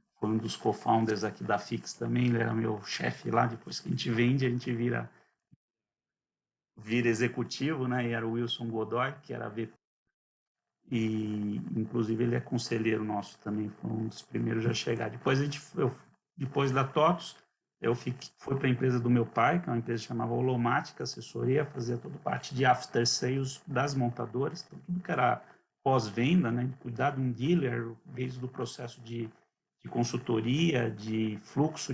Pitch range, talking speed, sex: 115-135 Hz, 175 wpm, male